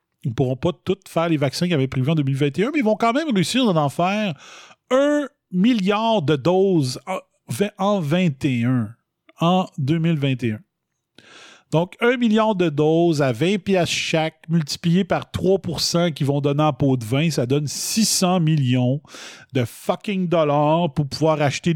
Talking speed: 165 wpm